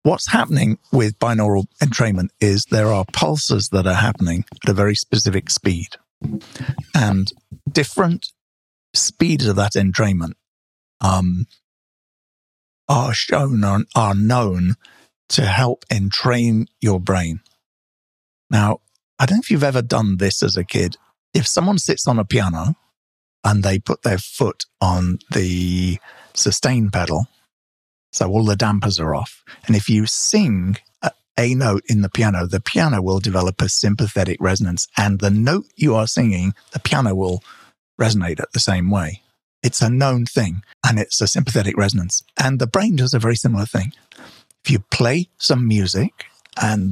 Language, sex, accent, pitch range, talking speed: English, male, British, 95-120 Hz, 155 wpm